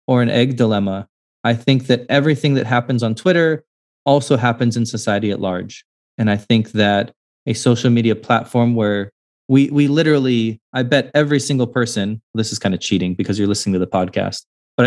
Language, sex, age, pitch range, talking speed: English, male, 20-39, 105-125 Hz, 190 wpm